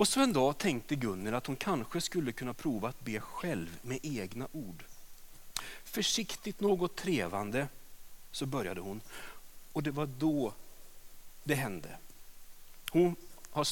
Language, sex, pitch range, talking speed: Swedish, male, 125-175 Hz, 140 wpm